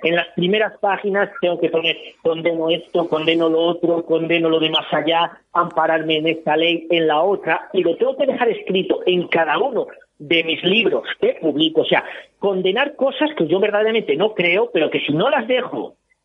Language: Spanish